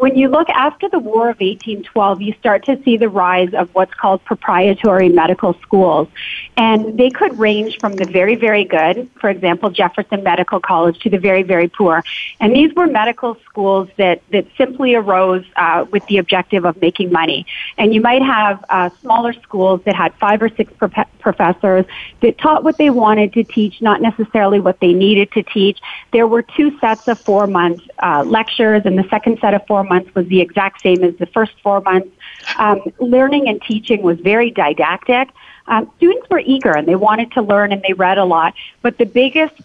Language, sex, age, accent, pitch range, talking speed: English, female, 30-49, American, 185-230 Hz, 195 wpm